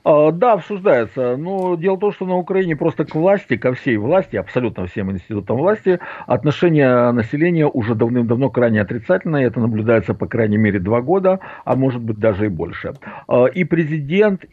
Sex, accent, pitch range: male, native, 110-155 Hz